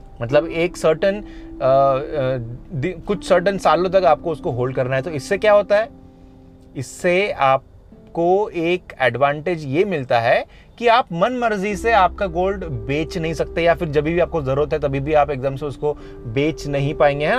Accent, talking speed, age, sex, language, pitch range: native, 175 wpm, 30-49, male, Hindi, 130-190 Hz